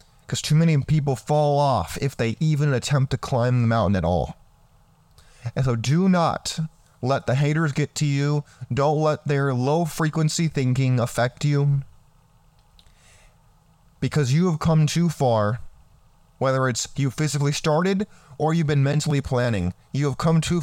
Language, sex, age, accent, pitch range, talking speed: English, male, 30-49, American, 120-150 Hz, 155 wpm